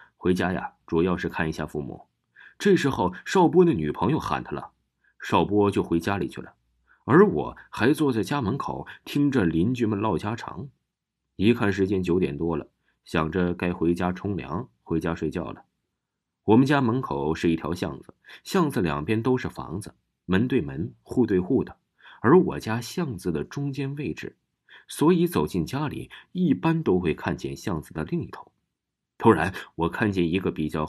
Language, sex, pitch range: Chinese, male, 85-135 Hz